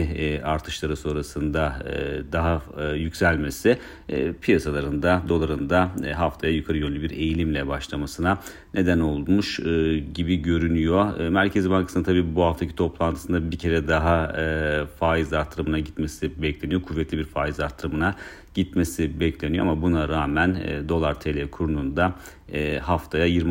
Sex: male